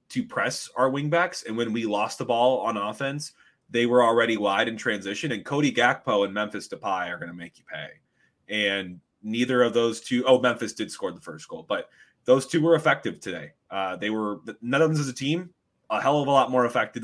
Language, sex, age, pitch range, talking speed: English, male, 20-39, 105-140 Hz, 230 wpm